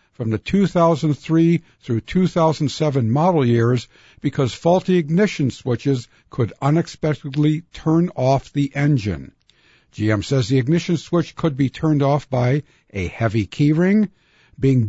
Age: 60-79